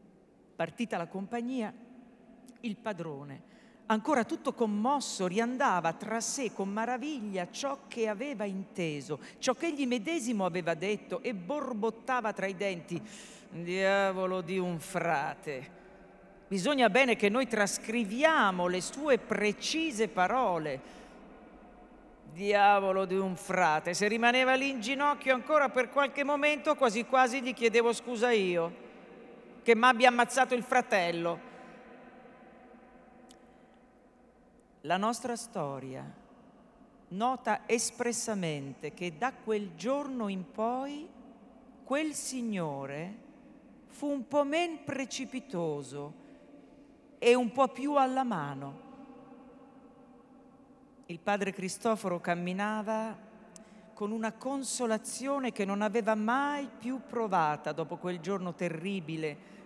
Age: 50-69